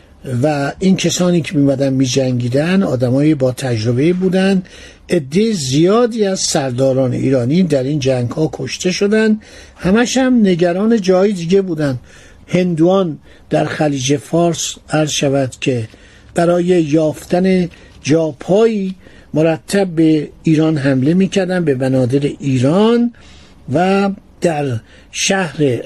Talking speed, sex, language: 105 wpm, male, Persian